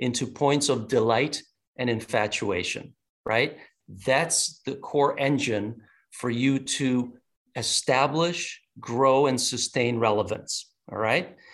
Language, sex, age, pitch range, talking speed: English, male, 50-69, 115-150 Hz, 110 wpm